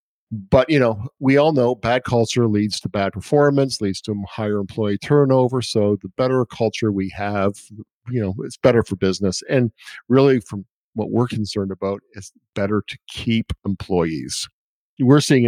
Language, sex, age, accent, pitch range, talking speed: English, male, 50-69, American, 100-125 Hz, 165 wpm